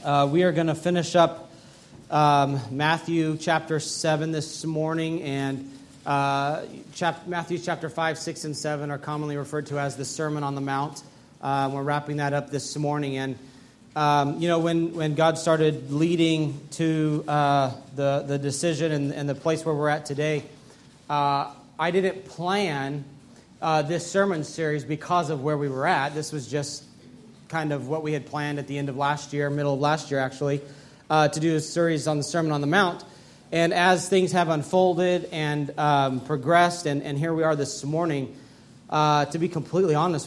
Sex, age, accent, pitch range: male, 30-49, American, 140-160 Hz